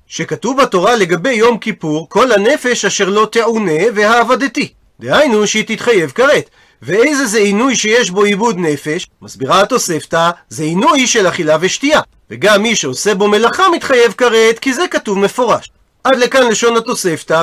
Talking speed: 150 wpm